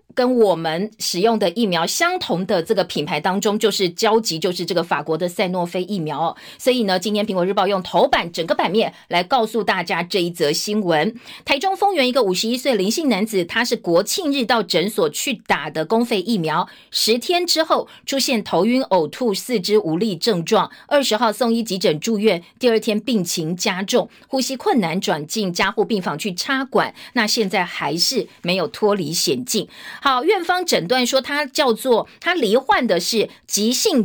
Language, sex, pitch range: Chinese, female, 180-245 Hz